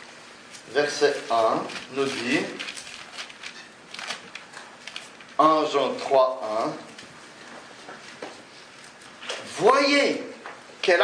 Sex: male